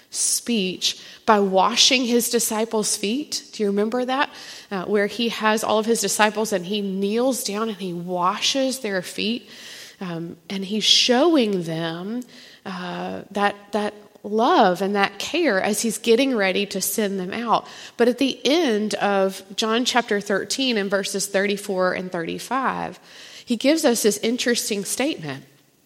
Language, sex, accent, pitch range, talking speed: English, female, American, 190-240 Hz, 155 wpm